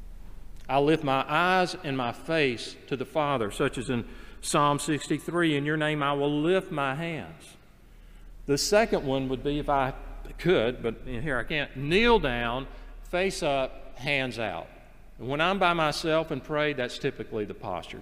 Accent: American